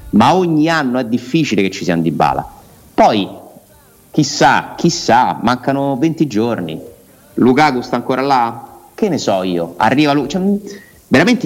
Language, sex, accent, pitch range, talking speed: Italian, male, native, 100-130 Hz, 145 wpm